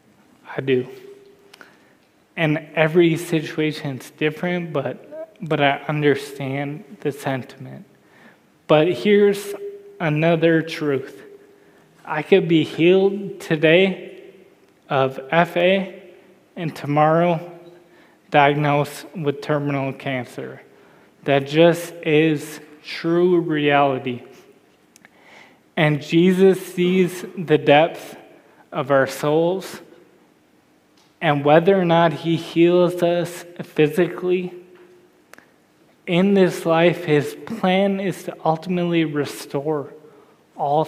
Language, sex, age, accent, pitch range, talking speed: English, male, 20-39, American, 145-180 Hz, 90 wpm